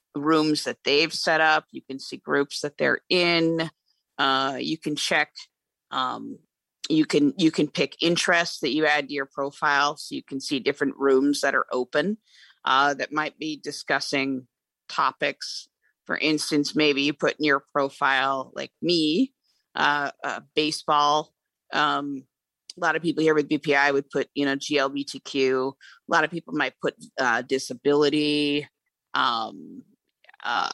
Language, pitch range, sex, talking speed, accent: English, 140-155 Hz, female, 155 wpm, American